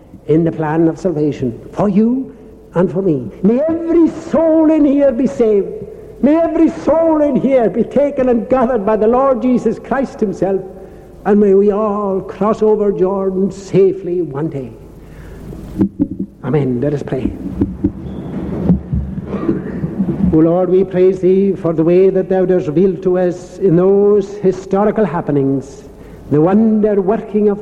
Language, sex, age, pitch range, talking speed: English, male, 60-79, 165-215 Hz, 150 wpm